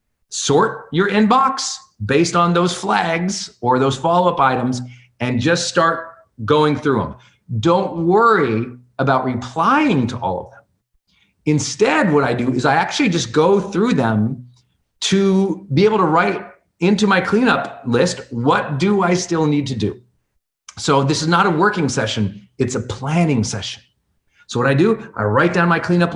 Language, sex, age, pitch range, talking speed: English, male, 40-59, 115-175 Hz, 165 wpm